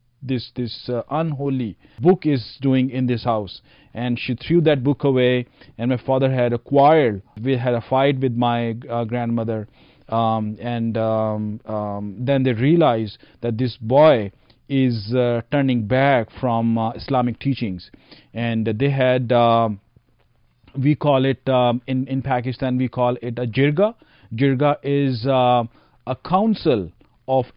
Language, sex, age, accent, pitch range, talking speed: English, male, 40-59, Indian, 120-150 Hz, 155 wpm